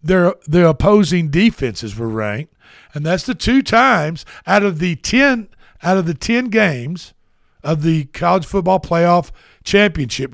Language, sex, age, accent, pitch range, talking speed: English, male, 60-79, American, 125-185 Hz, 150 wpm